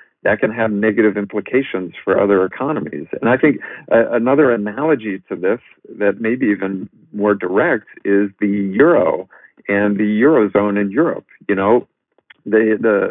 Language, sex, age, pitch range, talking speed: English, male, 50-69, 100-110 Hz, 150 wpm